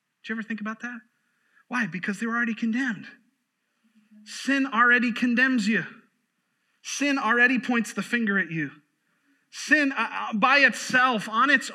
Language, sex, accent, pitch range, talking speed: English, male, American, 180-245 Hz, 150 wpm